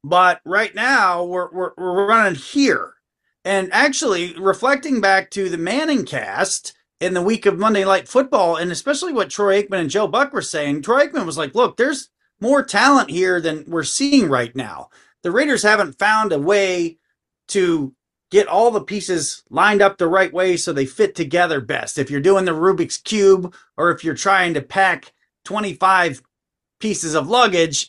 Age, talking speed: 30-49, 180 wpm